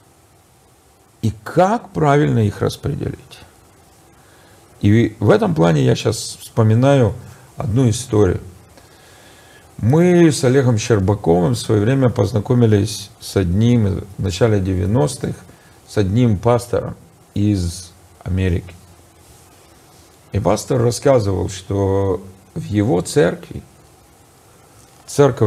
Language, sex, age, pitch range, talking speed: Russian, male, 50-69, 100-140 Hz, 95 wpm